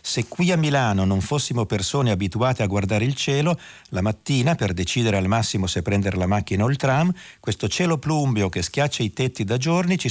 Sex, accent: male, native